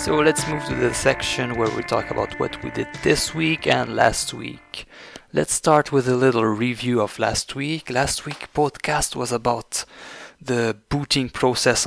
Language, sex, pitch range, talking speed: English, male, 110-130 Hz, 175 wpm